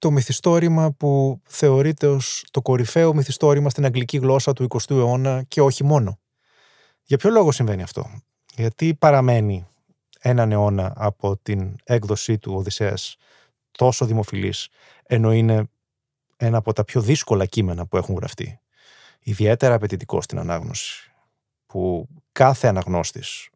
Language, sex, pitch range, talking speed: Greek, male, 110-140 Hz, 130 wpm